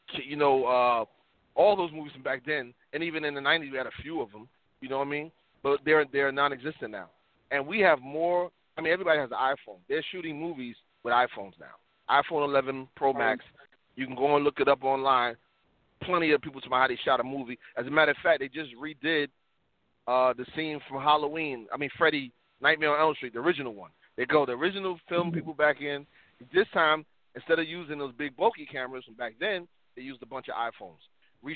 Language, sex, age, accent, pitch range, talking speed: English, male, 30-49, American, 135-165 Hz, 225 wpm